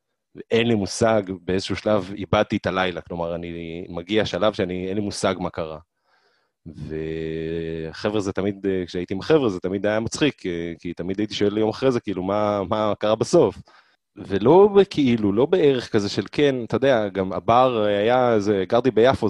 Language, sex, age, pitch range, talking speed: Hebrew, male, 30-49, 95-120 Hz, 165 wpm